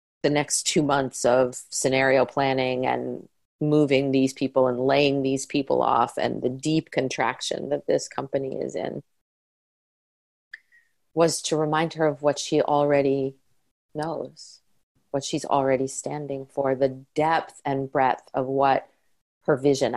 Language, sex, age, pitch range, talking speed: English, female, 30-49, 130-150 Hz, 140 wpm